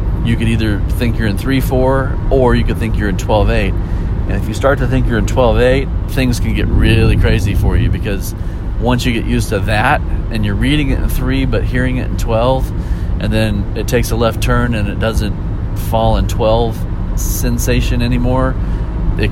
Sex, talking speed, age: male, 210 wpm, 40-59